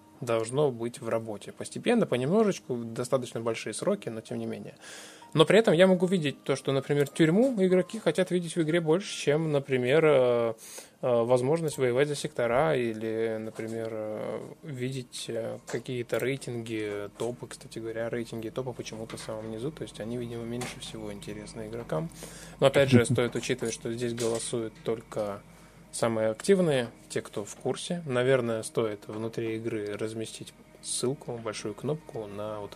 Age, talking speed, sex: 20-39, 150 wpm, male